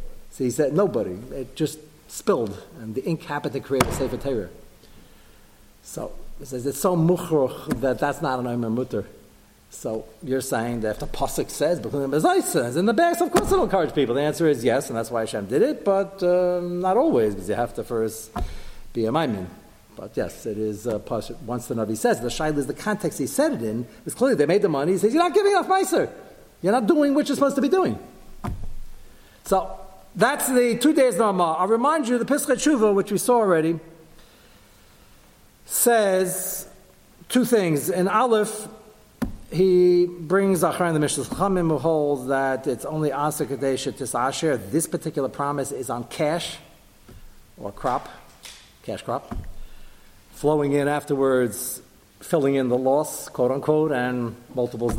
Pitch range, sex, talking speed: 130-195 Hz, male, 175 wpm